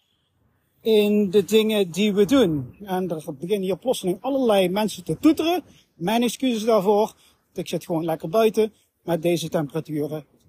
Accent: Dutch